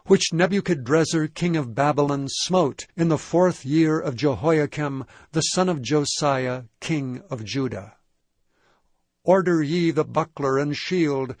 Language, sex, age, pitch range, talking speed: English, male, 60-79, 135-165 Hz, 130 wpm